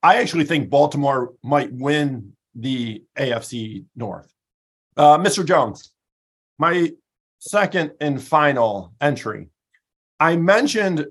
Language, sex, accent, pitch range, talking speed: English, male, American, 130-170 Hz, 105 wpm